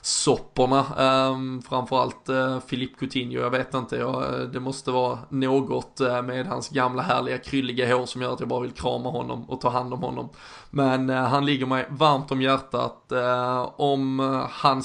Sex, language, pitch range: male, Swedish, 125-135 Hz